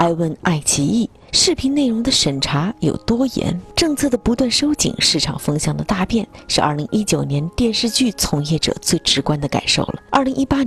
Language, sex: Chinese, female